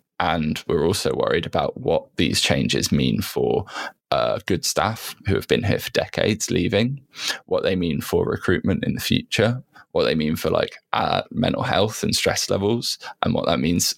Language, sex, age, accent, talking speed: English, male, 10-29, British, 185 wpm